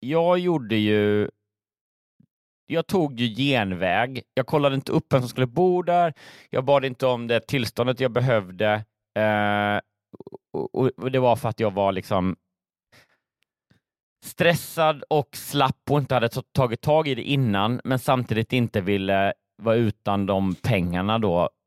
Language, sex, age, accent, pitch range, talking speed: Swedish, male, 30-49, native, 95-130 Hz, 150 wpm